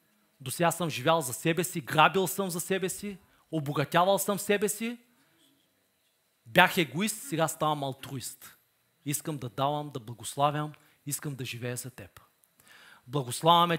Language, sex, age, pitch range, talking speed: Bulgarian, male, 40-59, 150-205 Hz, 140 wpm